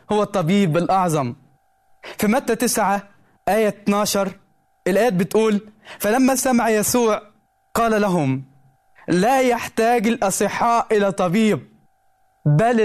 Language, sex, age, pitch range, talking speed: Arabic, male, 20-39, 190-235 Hz, 100 wpm